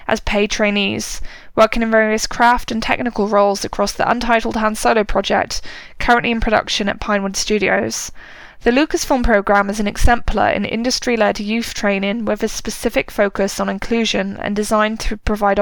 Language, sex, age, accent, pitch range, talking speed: English, female, 10-29, British, 200-230 Hz, 160 wpm